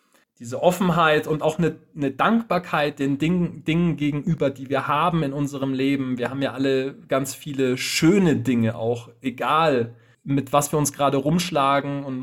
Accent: German